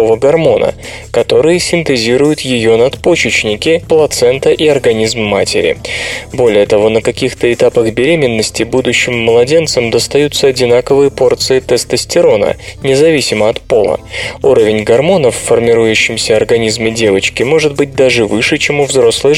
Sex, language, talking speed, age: male, Russian, 115 wpm, 20-39